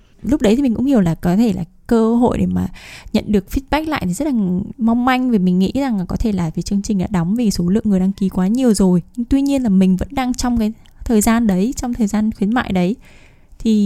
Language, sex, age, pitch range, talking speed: Vietnamese, female, 10-29, 185-230 Hz, 275 wpm